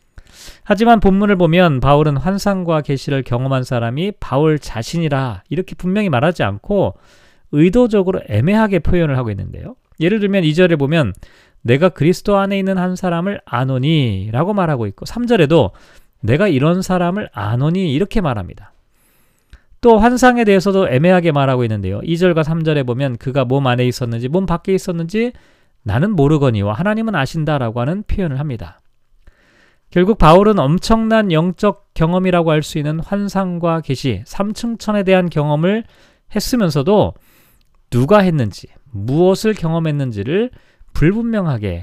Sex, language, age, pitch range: male, Korean, 40-59, 135-190 Hz